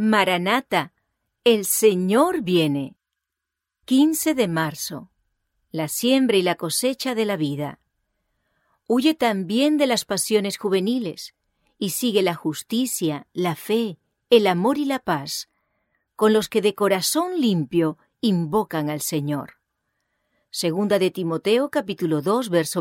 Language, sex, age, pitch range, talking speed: English, female, 40-59, 165-240 Hz, 125 wpm